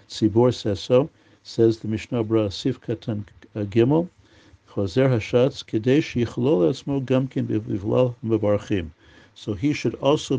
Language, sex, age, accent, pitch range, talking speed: English, male, 50-69, American, 105-125 Hz, 125 wpm